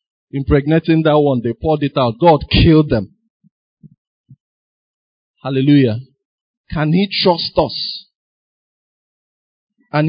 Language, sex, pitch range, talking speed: English, male, 130-190 Hz, 95 wpm